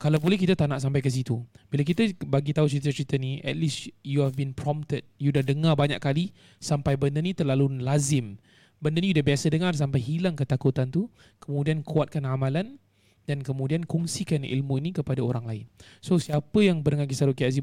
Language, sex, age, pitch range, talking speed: Malay, male, 20-39, 130-155 Hz, 195 wpm